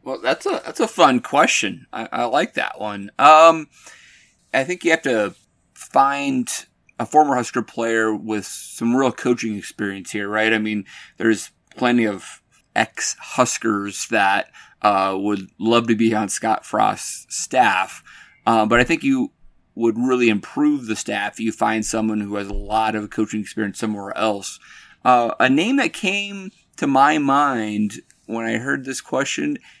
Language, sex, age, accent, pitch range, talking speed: English, male, 30-49, American, 105-125 Hz, 165 wpm